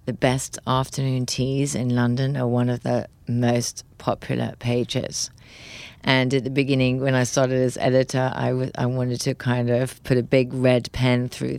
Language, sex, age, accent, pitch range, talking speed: English, female, 30-49, British, 125-155 Hz, 175 wpm